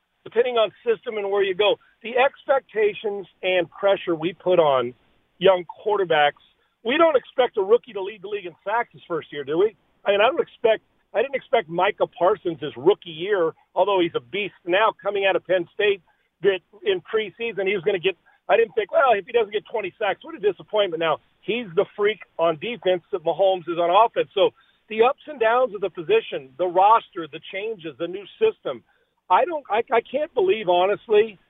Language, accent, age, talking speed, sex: English, American, 50-69, 205 wpm, male